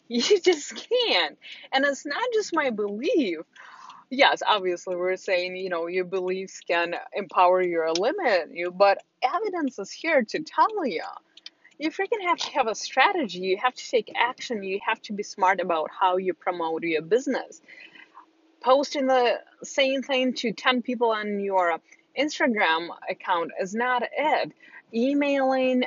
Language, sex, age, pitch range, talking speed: English, female, 20-39, 190-270 Hz, 160 wpm